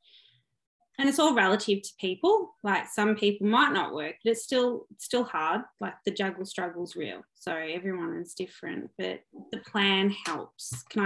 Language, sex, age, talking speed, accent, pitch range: English, female, 20-39, 170 wpm, Australian, 185-225 Hz